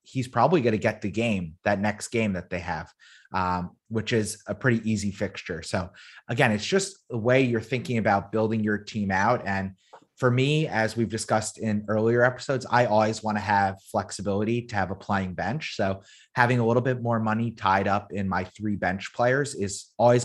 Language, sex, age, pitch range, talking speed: English, male, 30-49, 100-120 Hz, 205 wpm